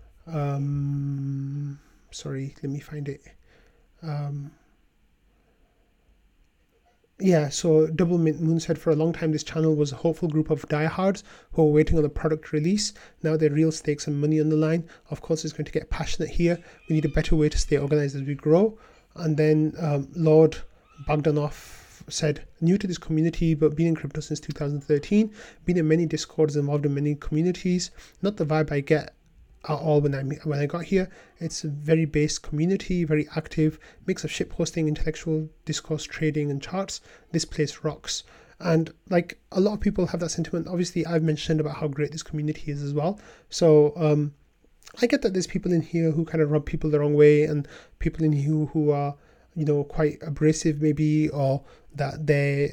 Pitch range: 145-165 Hz